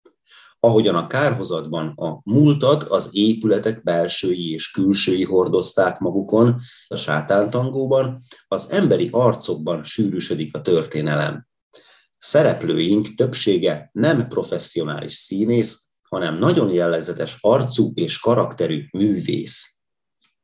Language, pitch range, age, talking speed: Hungarian, 90-120 Hz, 30-49, 95 wpm